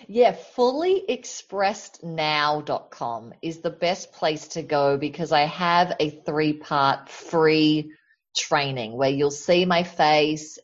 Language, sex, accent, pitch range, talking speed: English, female, Australian, 160-220 Hz, 125 wpm